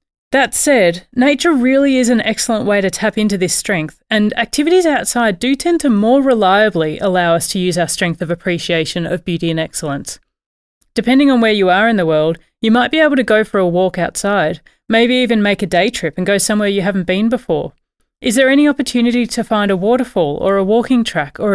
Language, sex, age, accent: English, female, 30-49, Australian